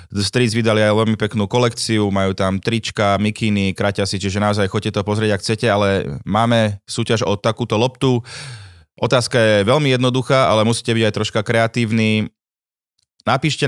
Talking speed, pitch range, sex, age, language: 160 wpm, 100-120 Hz, male, 20-39, Slovak